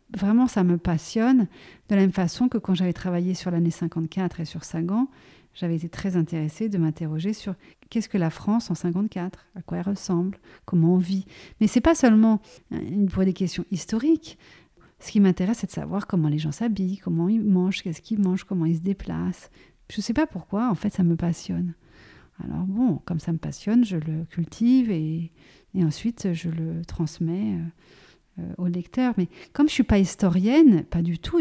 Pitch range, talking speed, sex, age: 175-230 Hz, 205 wpm, female, 40-59